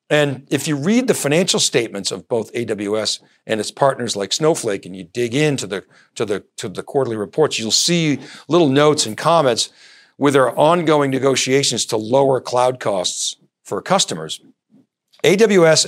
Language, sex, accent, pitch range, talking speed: English, male, American, 115-155 Hz, 155 wpm